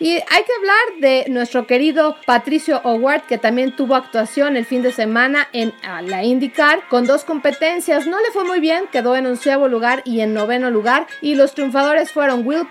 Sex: female